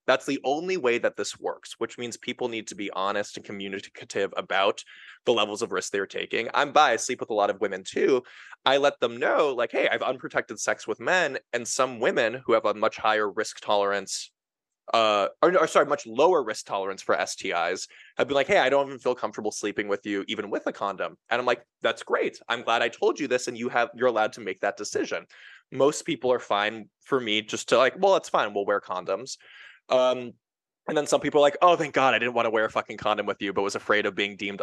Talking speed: 245 wpm